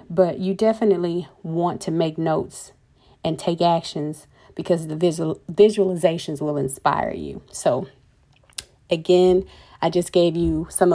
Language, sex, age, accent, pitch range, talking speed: English, female, 40-59, American, 175-210 Hz, 130 wpm